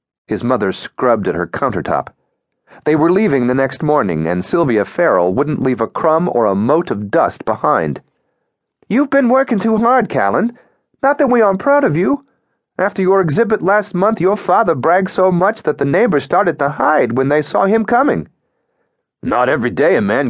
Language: English